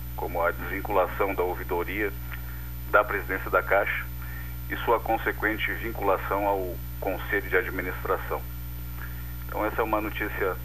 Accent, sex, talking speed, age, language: Brazilian, male, 125 wpm, 50-69, Portuguese